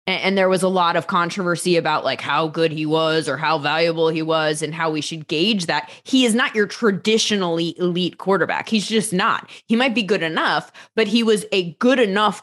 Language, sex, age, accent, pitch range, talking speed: English, female, 20-39, American, 165-205 Hz, 215 wpm